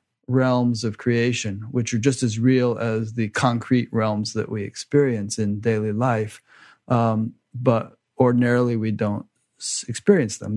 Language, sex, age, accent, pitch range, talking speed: English, male, 40-59, American, 110-125 Hz, 140 wpm